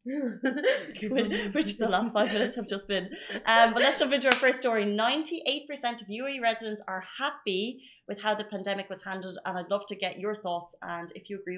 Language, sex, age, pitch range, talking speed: Arabic, female, 30-49, 180-220 Hz, 200 wpm